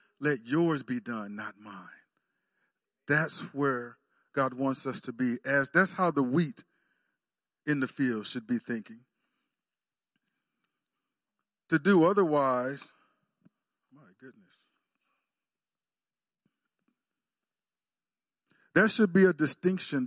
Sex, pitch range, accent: male, 130-165 Hz, American